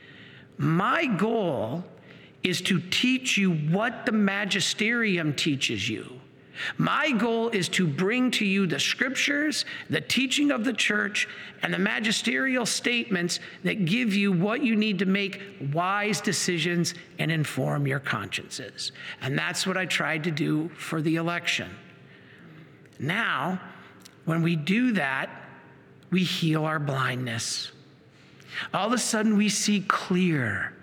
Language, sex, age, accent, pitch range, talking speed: English, male, 50-69, American, 160-220 Hz, 135 wpm